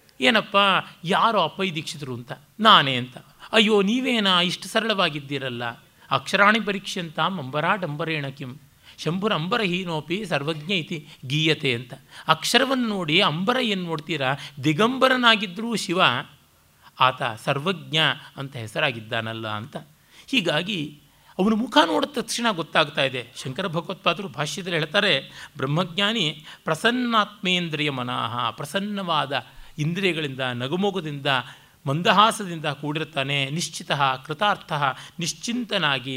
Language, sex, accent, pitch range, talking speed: Kannada, male, native, 145-205 Hz, 90 wpm